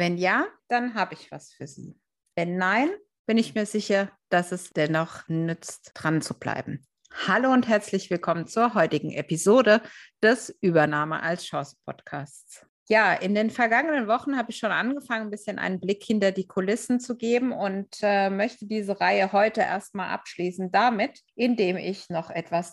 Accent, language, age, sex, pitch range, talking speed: German, German, 50-69, female, 175-225 Hz, 170 wpm